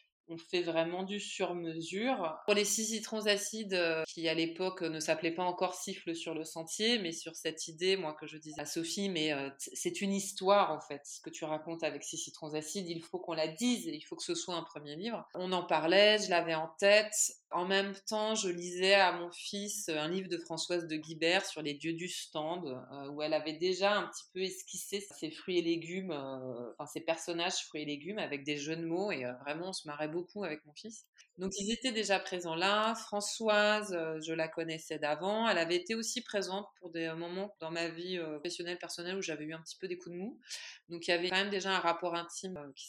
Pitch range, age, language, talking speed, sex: 160-195 Hz, 20-39, French, 235 wpm, female